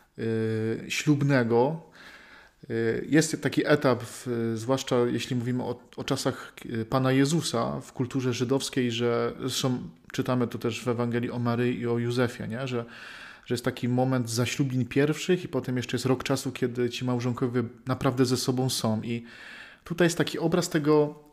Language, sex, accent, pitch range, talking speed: Polish, male, native, 125-160 Hz, 150 wpm